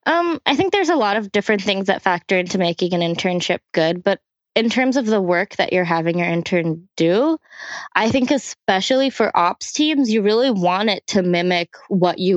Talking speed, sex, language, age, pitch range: 205 wpm, female, English, 20-39, 170-215 Hz